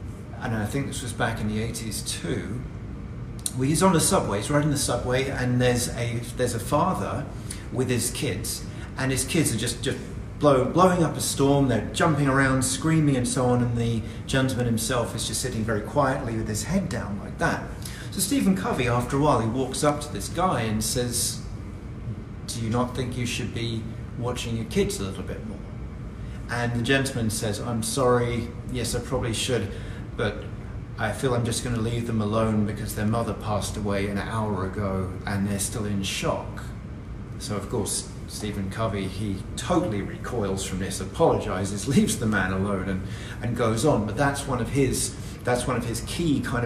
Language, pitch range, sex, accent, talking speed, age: English, 105-125 Hz, male, British, 195 wpm, 40-59